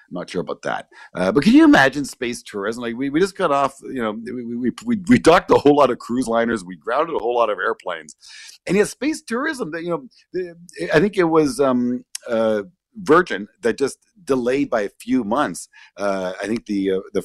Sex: male